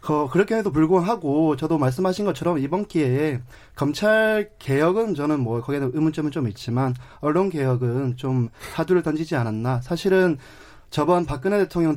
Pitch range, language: 130-170 Hz, Korean